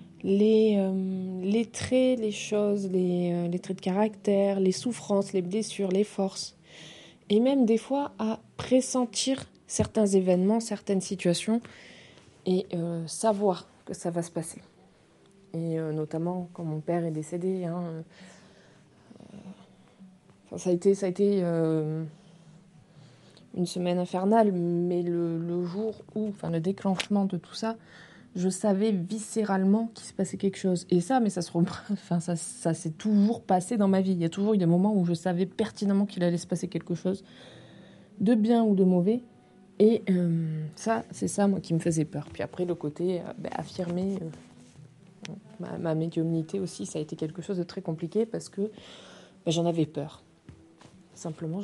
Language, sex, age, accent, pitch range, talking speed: French, female, 20-39, French, 170-205 Hz, 170 wpm